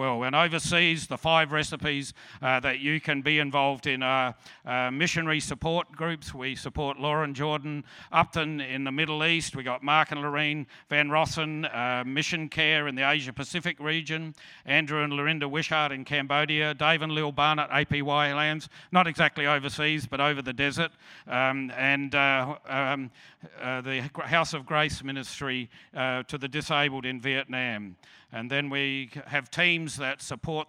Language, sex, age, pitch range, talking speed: English, male, 50-69, 135-155 Hz, 165 wpm